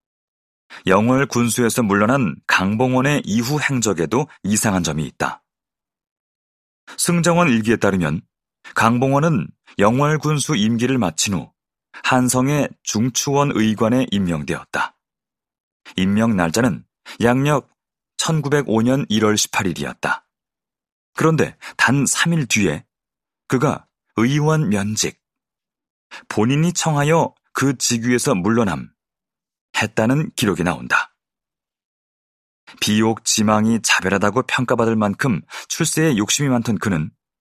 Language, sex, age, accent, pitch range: Korean, male, 30-49, native, 105-140 Hz